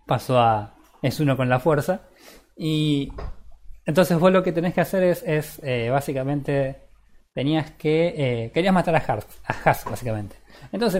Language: Spanish